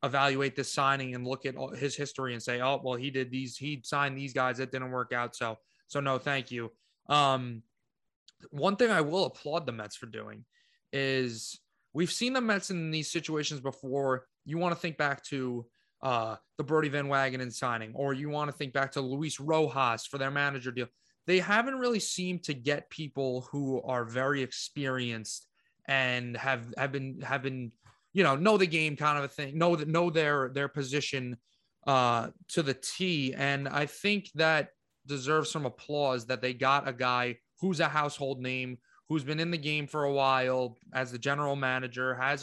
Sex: male